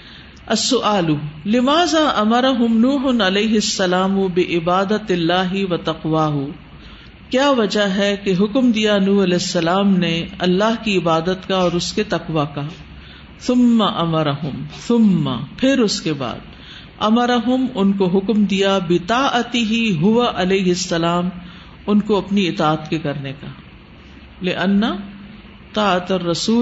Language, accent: English, Indian